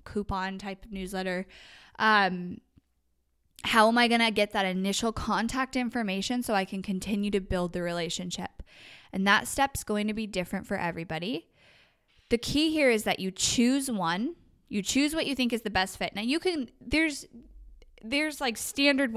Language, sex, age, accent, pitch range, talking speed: English, female, 10-29, American, 185-235 Hz, 175 wpm